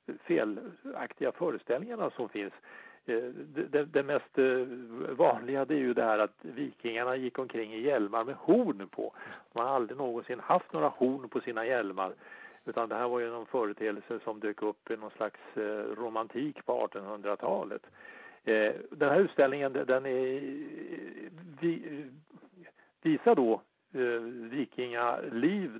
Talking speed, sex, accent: 130 wpm, male, Norwegian